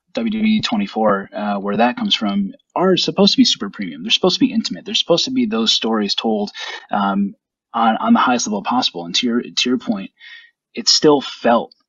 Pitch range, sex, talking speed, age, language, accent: 150-235 Hz, male, 205 wpm, 20-39, English, American